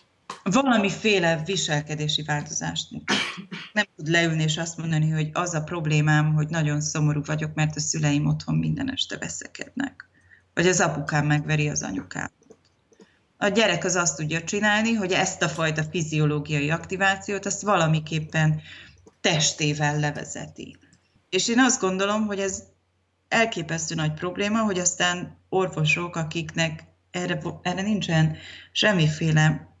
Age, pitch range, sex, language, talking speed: 30-49, 150-180 Hz, female, Hungarian, 130 wpm